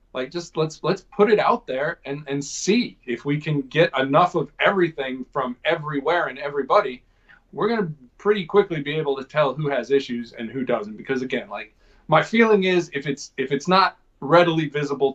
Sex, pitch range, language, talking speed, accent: male, 130-175 Hz, English, 195 wpm, American